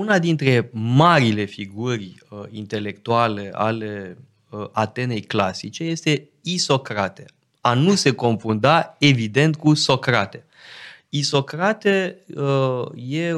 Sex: male